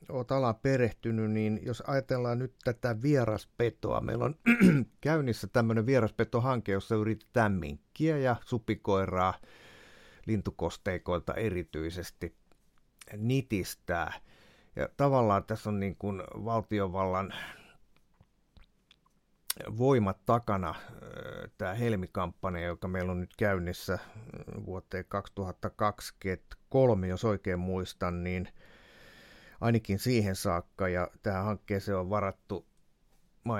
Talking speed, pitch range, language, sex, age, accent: 95 wpm, 90-115 Hz, Finnish, male, 50-69, native